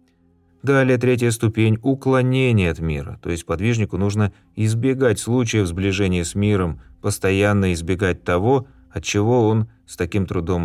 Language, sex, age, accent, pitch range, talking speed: Russian, male, 30-49, native, 85-110 Hz, 135 wpm